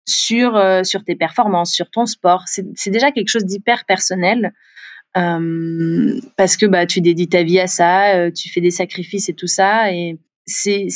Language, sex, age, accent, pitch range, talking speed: French, female, 20-39, French, 185-220 Hz, 190 wpm